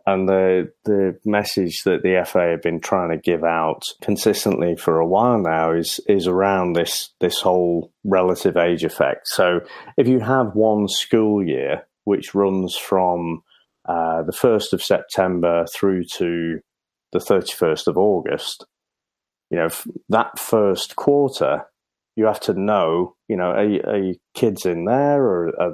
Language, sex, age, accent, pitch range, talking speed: English, male, 30-49, British, 90-115 Hz, 160 wpm